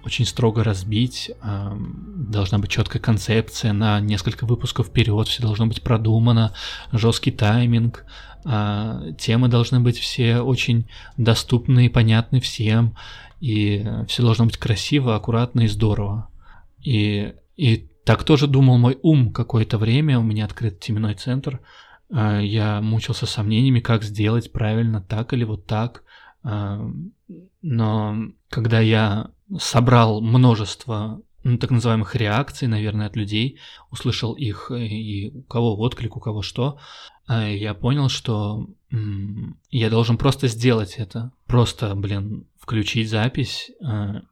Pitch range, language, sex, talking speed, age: 105-125 Hz, Russian, male, 125 wpm, 20-39